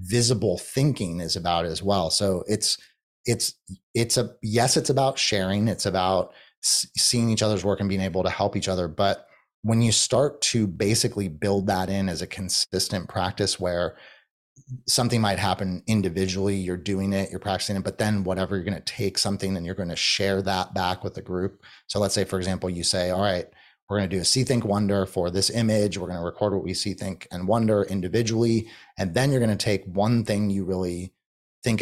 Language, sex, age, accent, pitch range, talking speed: English, male, 30-49, American, 95-115 Hz, 210 wpm